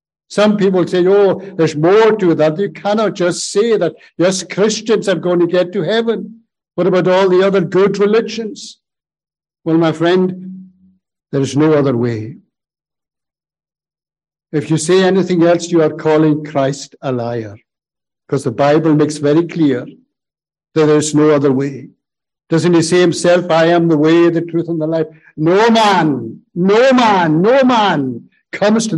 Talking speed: 165 wpm